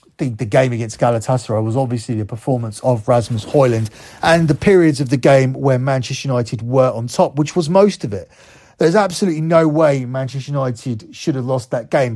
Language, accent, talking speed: English, British, 200 wpm